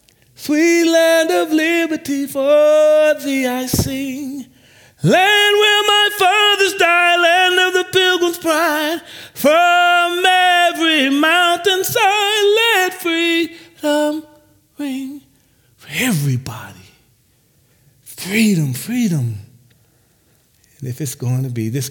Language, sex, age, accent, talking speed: English, male, 40-59, American, 95 wpm